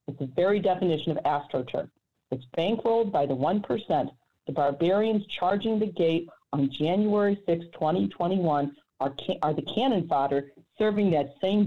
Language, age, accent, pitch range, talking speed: English, 50-69, American, 150-180 Hz, 155 wpm